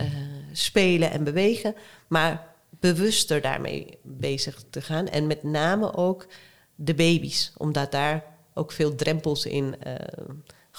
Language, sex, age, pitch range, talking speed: Dutch, female, 40-59, 145-175 Hz, 130 wpm